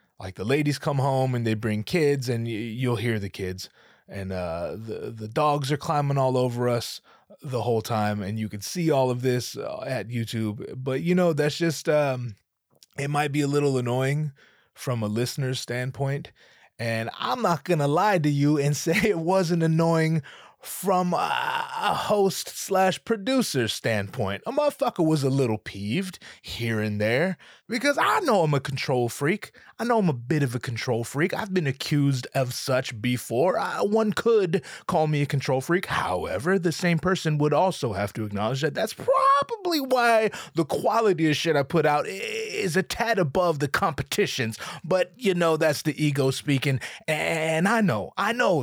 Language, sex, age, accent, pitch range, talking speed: English, male, 20-39, American, 125-185 Hz, 185 wpm